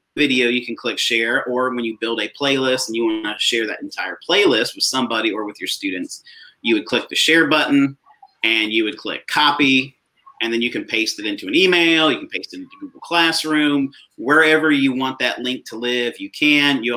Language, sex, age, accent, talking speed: English, male, 30-49, American, 220 wpm